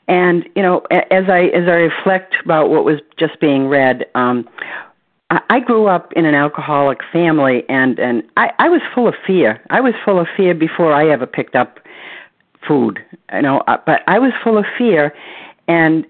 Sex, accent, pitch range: female, American, 145-190 Hz